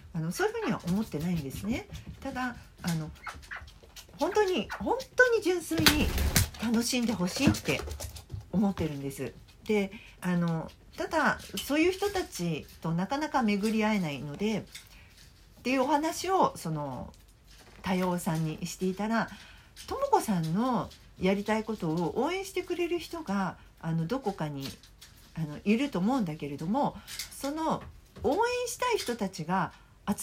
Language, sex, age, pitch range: Japanese, female, 50-69, 170-270 Hz